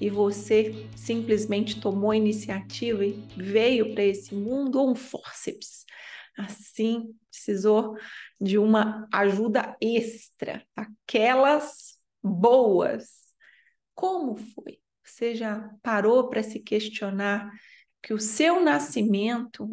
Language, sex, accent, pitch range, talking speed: Portuguese, female, Brazilian, 210-245 Hz, 100 wpm